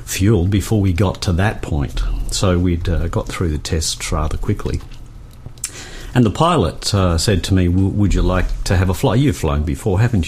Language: English